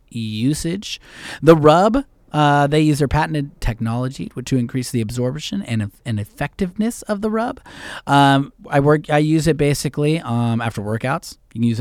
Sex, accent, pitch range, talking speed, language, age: male, American, 120-155 Hz, 170 wpm, English, 30-49